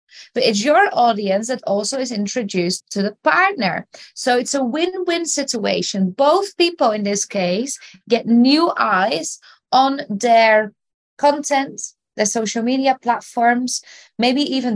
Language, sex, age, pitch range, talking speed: English, female, 20-39, 225-315 Hz, 135 wpm